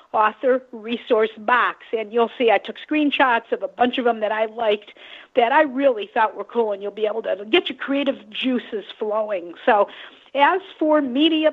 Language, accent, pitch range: English, American, 230-280 Hz